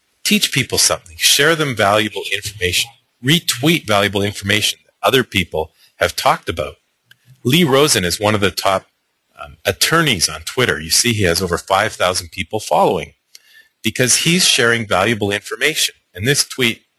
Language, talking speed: English, 155 wpm